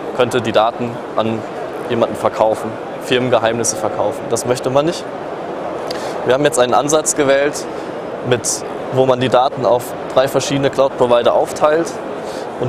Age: 20-39